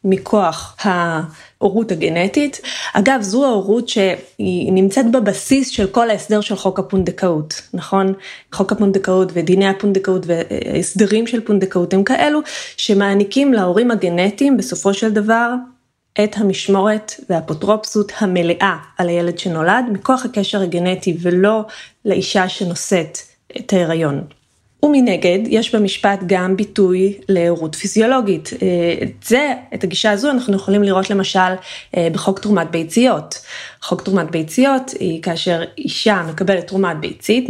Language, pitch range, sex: Hebrew, 180-215 Hz, female